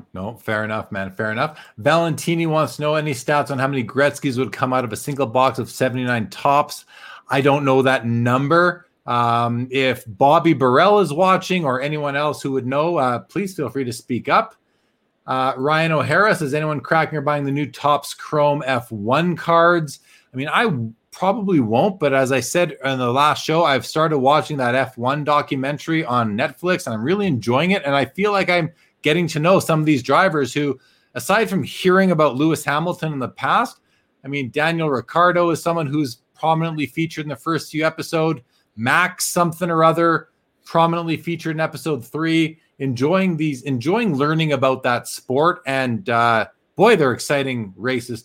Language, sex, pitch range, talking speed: English, male, 130-165 Hz, 185 wpm